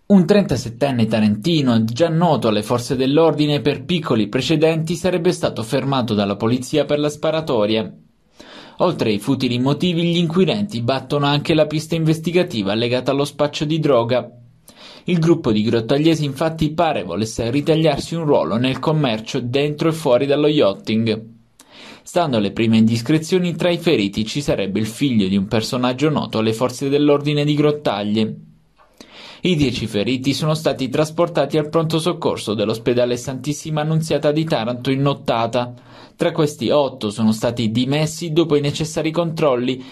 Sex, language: male, Italian